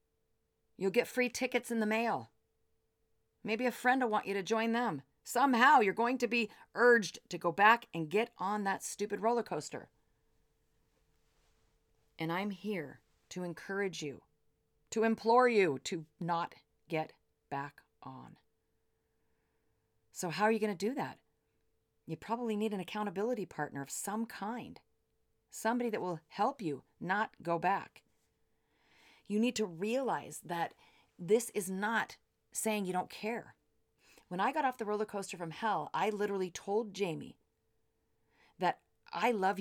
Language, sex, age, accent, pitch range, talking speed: English, female, 40-59, American, 170-225 Hz, 150 wpm